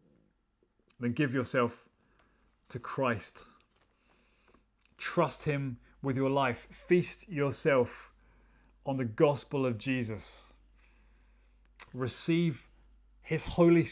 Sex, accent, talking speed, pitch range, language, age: male, British, 85 wpm, 115-145 Hz, English, 30-49